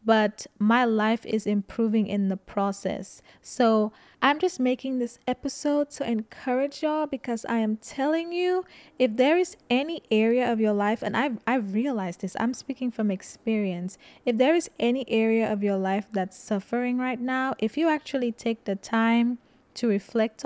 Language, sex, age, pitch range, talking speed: English, female, 20-39, 200-250 Hz, 175 wpm